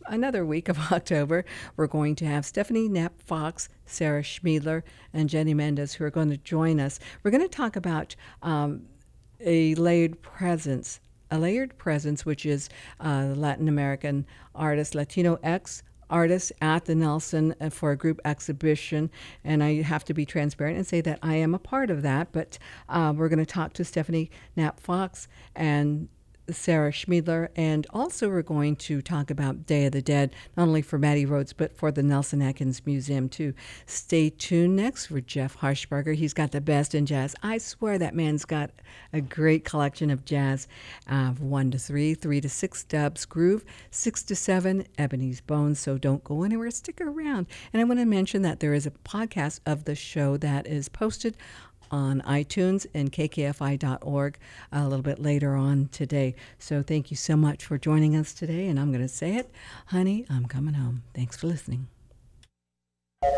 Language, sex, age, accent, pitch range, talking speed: English, female, 50-69, American, 140-170 Hz, 180 wpm